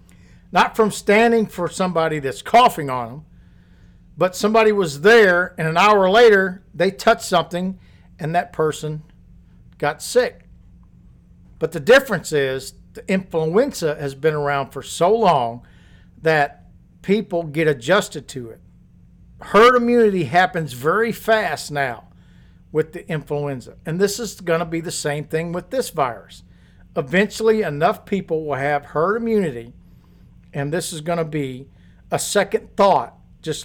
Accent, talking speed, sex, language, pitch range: American, 145 wpm, male, English, 140-200 Hz